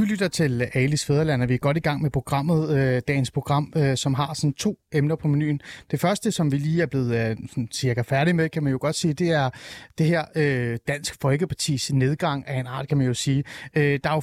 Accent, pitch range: native, 135-170 Hz